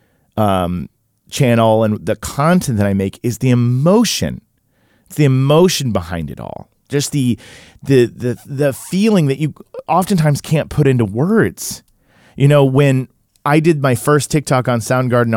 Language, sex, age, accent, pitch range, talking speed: English, male, 40-59, American, 105-140 Hz, 155 wpm